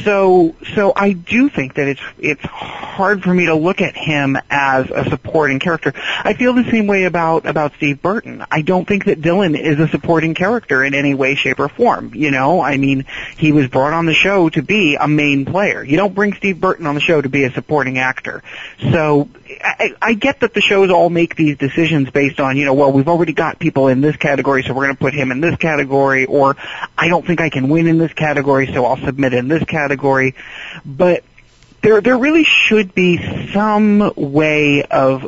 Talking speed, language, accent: 220 wpm, English, American